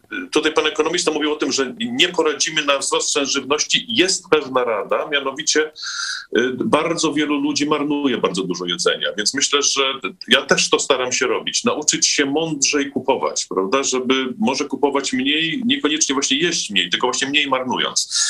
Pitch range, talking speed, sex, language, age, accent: 135-225 Hz, 165 wpm, male, Polish, 40-59, native